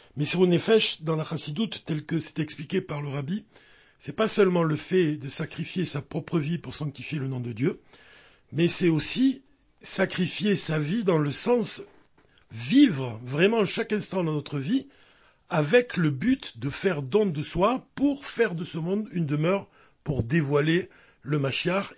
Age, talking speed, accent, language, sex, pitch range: 50-69, 180 wpm, French, French, male, 150-195 Hz